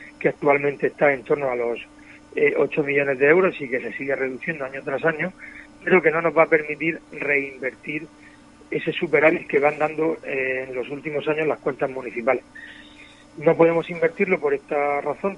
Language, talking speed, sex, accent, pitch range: Spanish, 185 wpm, male, Spanish, 145-180 Hz